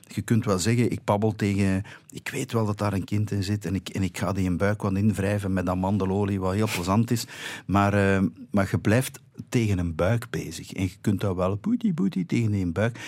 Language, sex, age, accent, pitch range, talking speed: Dutch, male, 50-69, Dutch, 95-130 Hz, 235 wpm